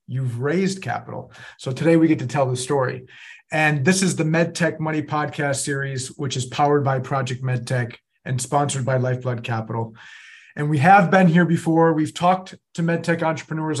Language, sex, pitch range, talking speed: English, male, 130-150 Hz, 180 wpm